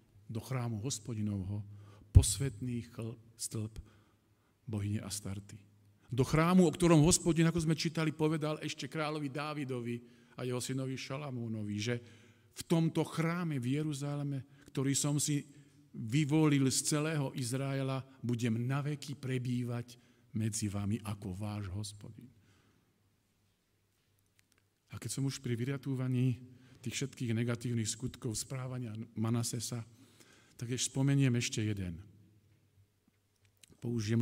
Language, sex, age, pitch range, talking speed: Slovak, male, 50-69, 105-130 Hz, 110 wpm